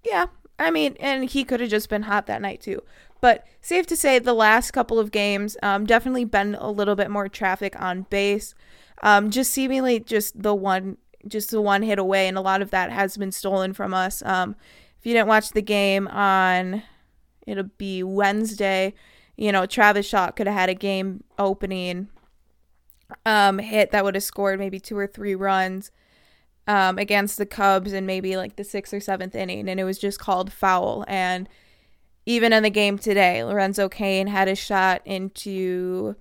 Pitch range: 190-215 Hz